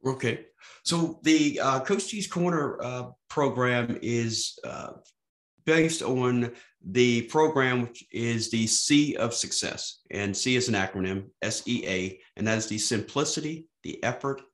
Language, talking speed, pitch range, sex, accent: English, 135 wpm, 100-120 Hz, male, American